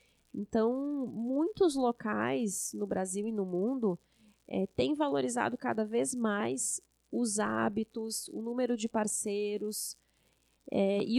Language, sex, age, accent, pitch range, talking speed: Portuguese, female, 20-39, Brazilian, 205-250 Hz, 105 wpm